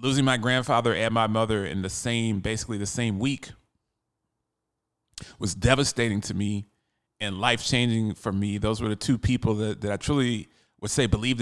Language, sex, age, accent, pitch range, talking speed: English, male, 30-49, American, 105-135 Hz, 175 wpm